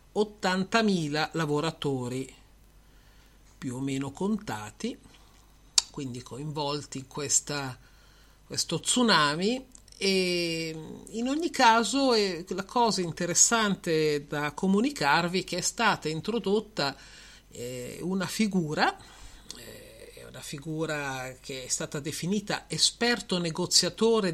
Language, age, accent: Italian, 50-69, native